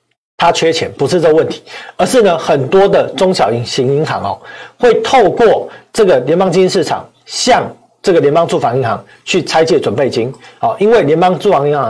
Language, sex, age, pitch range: Chinese, male, 40-59, 155-215 Hz